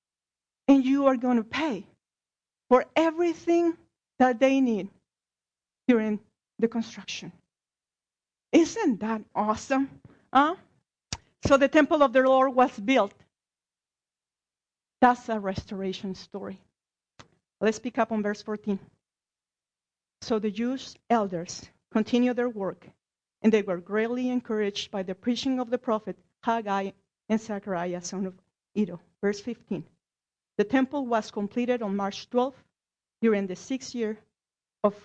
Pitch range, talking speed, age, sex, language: 190-250 Hz, 125 wpm, 40-59, female, English